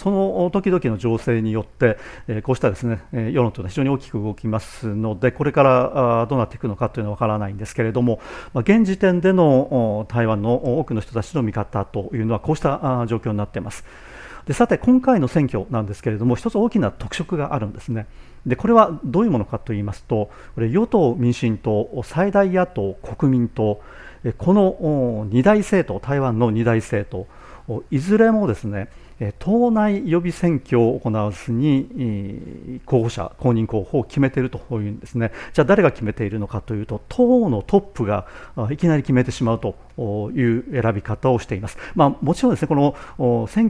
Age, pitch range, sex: 40-59, 110-150 Hz, male